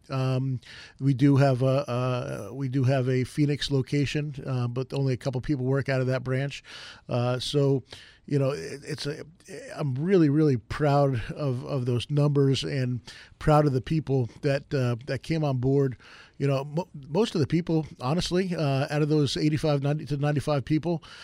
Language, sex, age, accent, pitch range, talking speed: English, male, 40-59, American, 130-150 Hz, 190 wpm